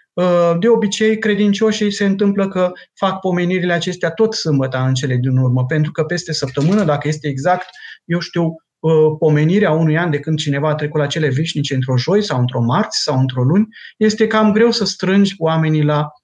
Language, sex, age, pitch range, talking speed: Romanian, male, 30-49, 140-195 Hz, 185 wpm